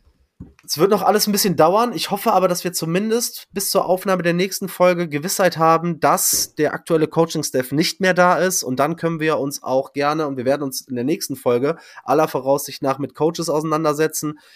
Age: 20-39